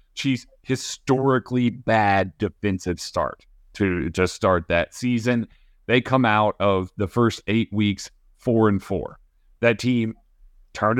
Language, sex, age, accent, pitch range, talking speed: English, male, 30-49, American, 100-140 Hz, 130 wpm